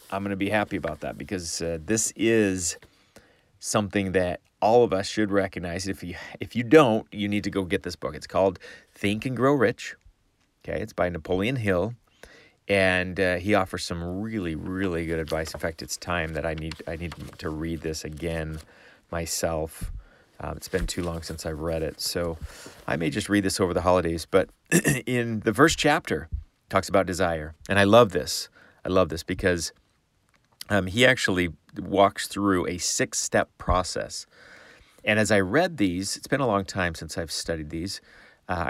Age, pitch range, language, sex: 30-49, 85-100 Hz, English, male